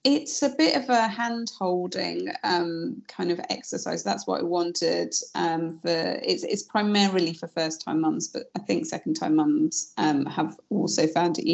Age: 30-49